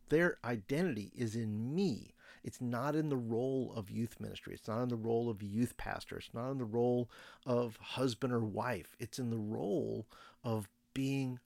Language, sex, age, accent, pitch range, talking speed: English, male, 50-69, American, 115-140 Hz, 190 wpm